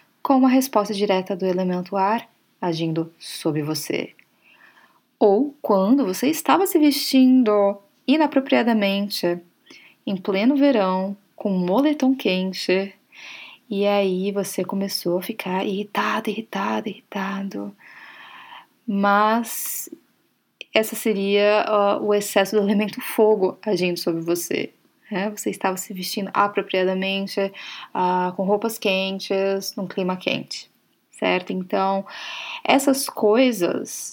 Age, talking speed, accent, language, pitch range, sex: 20-39, 105 wpm, Brazilian, Portuguese, 185-220 Hz, female